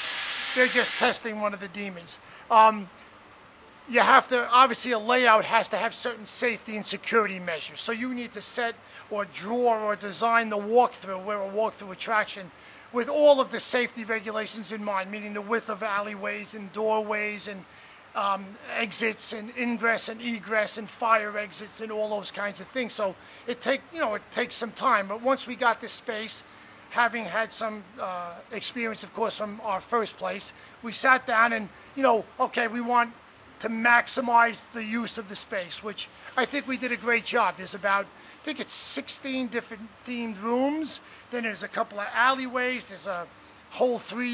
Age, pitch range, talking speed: 40-59, 205-240 Hz, 185 wpm